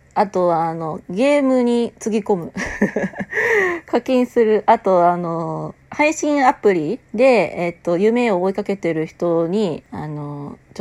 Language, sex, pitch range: Japanese, female, 160-210 Hz